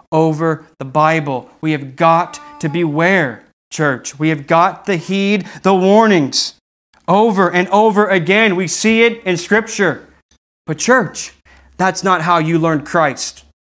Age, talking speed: 30-49, 145 wpm